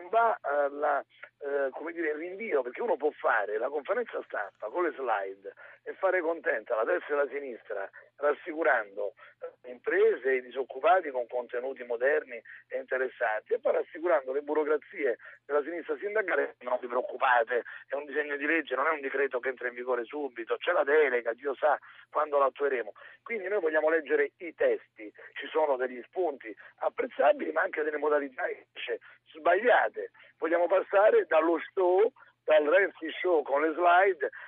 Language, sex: Italian, male